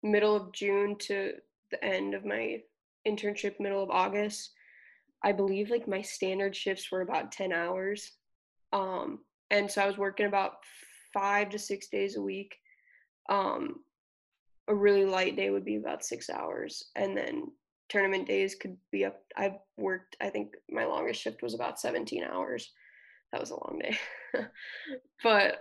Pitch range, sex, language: 190-210 Hz, female, English